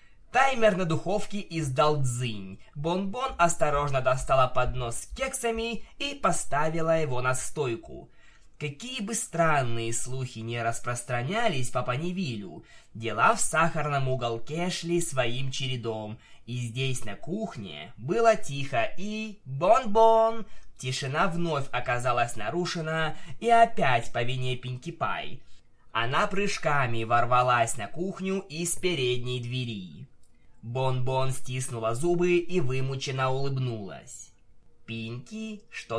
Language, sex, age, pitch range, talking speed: Russian, male, 20-39, 125-185 Hz, 110 wpm